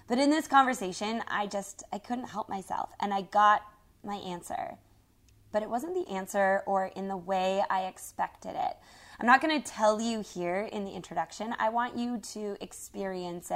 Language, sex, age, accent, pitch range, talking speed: English, female, 20-39, American, 185-230 Hz, 185 wpm